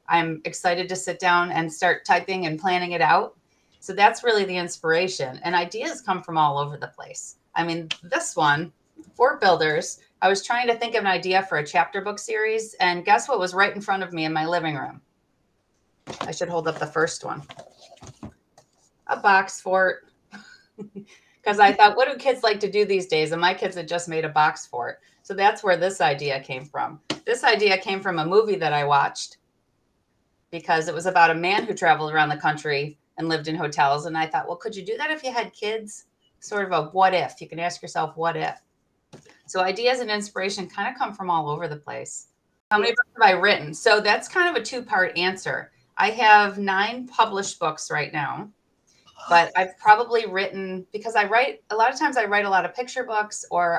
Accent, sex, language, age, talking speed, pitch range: American, female, English, 30-49, 215 wpm, 165-210 Hz